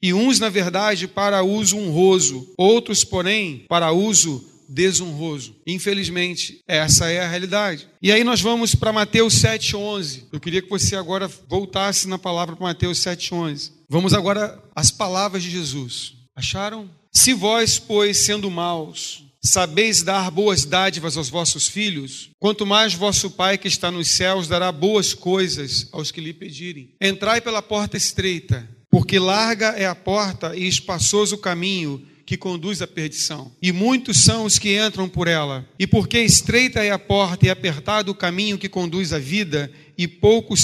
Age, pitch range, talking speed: 40-59, 165-205 Hz, 160 wpm